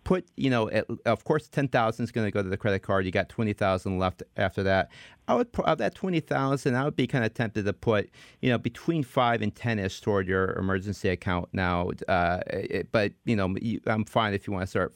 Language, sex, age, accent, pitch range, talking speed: English, male, 30-49, American, 95-120 Hz, 250 wpm